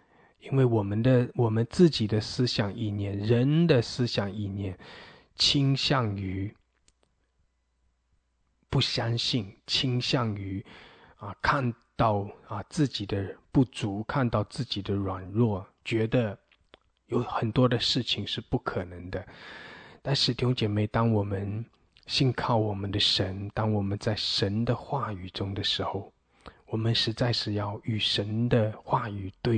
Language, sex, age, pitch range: English, male, 20-39, 95-120 Hz